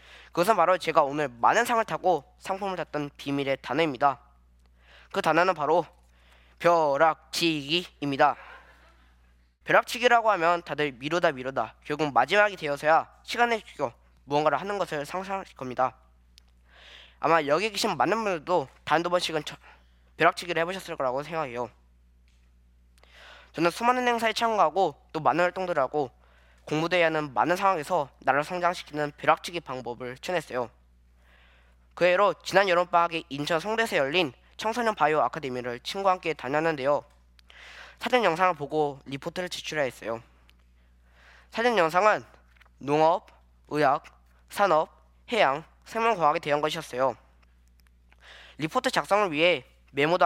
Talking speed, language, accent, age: 105 wpm, English, Korean, 20-39